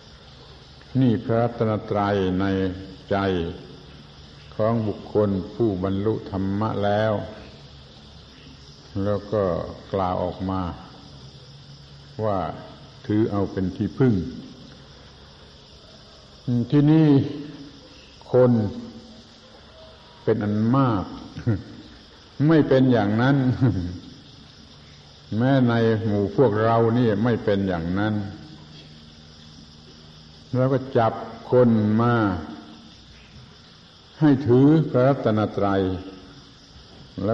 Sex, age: male, 70-89